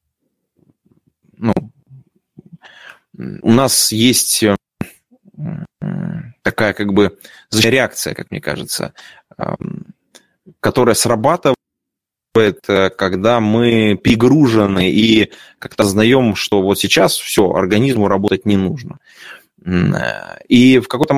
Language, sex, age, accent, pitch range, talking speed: Russian, male, 20-39, native, 105-170 Hz, 85 wpm